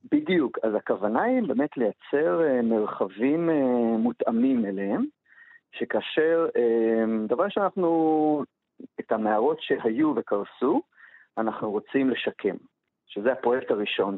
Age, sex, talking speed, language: 50-69, male, 95 wpm, Hebrew